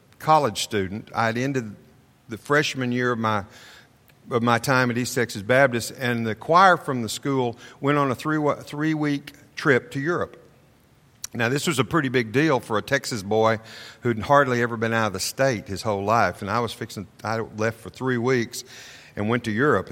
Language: English